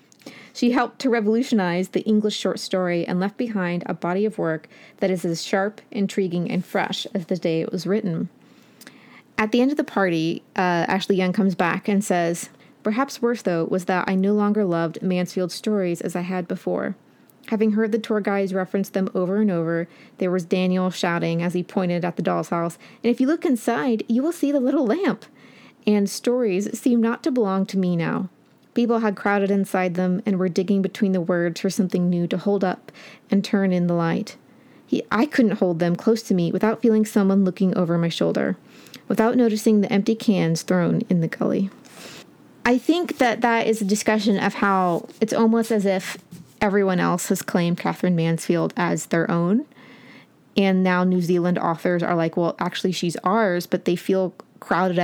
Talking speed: 195 wpm